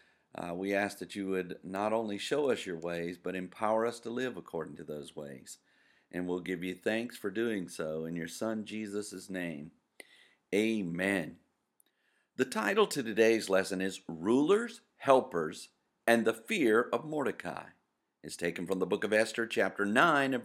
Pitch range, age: 95-130 Hz, 50-69